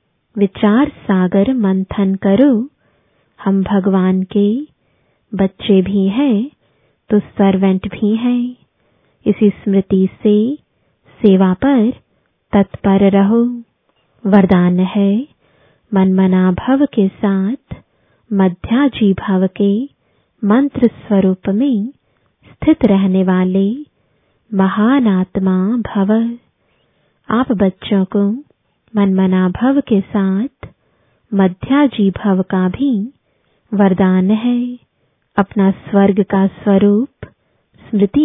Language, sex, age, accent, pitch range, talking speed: English, female, 20-39, Indian, 195-235 Hz, 90 wpm